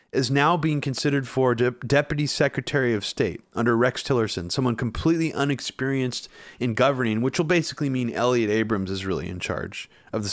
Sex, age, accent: male, 30-49, American